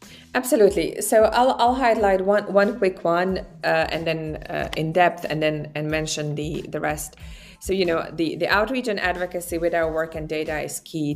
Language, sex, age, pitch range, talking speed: English, female, 20-39, 150-175 Hz, 200 wpm